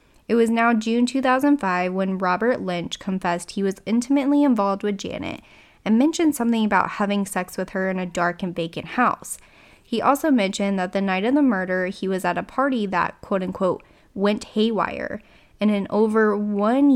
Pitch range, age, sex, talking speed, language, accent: 190-235 Hz, 10-29, female, 180 wpm, English, American